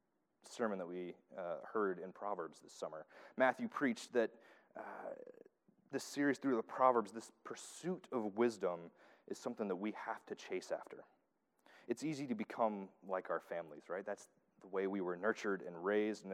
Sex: male